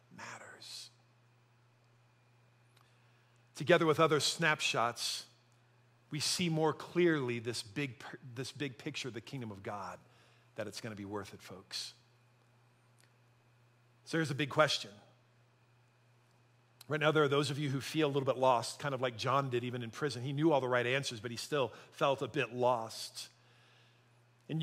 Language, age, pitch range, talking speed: English, 50-69, 120-140 Hz, 165 wpm